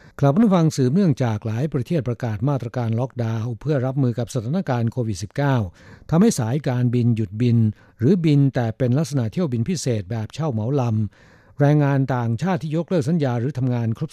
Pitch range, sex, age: 115-150 Hz, male, 60-79